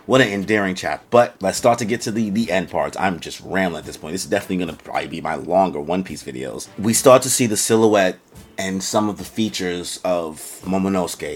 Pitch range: 90-105 Hz